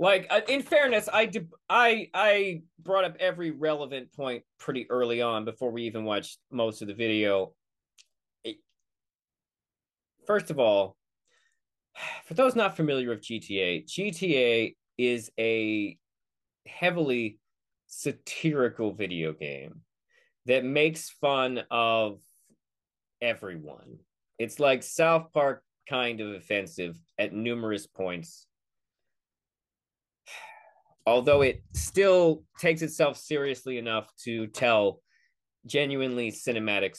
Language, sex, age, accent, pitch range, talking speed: English, male, 30-49, American, 110-160 Hz, 105 wpm